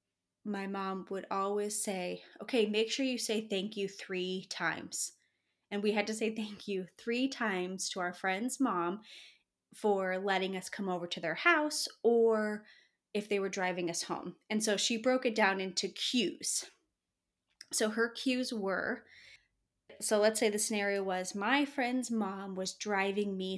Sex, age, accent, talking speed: female, 20-39, American, 170 wpm